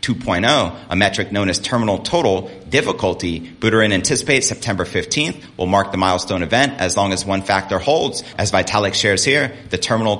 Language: English